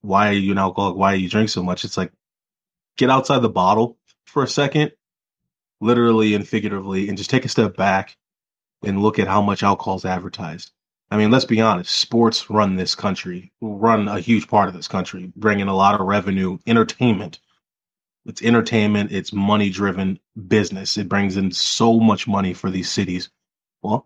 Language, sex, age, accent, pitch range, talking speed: English, male, 20-39, American, 95-110 Hz, 185 wpm